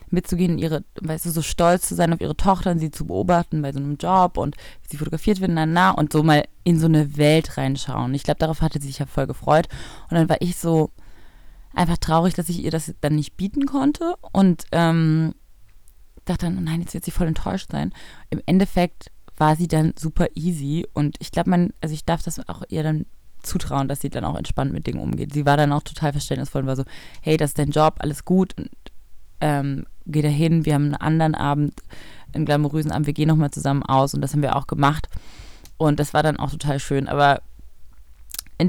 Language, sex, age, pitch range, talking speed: German, female, 20-39, 150-180 Hz, 225 wpm